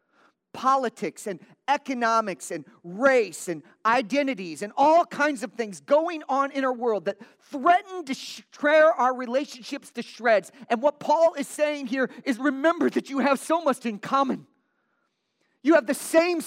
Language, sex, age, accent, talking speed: English, male, 40-59, American, 160 wpm